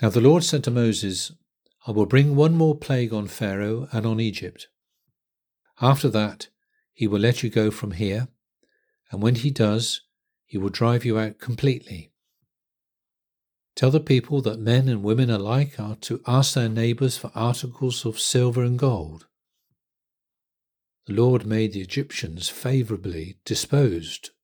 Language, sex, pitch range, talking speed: English, male, 105-130 Hz, 150 wpm